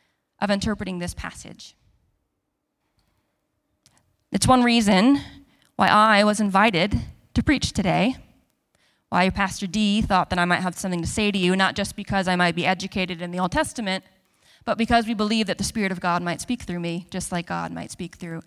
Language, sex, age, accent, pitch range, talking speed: English, female, 20-39, American, 180-225 Hz, 185 wpm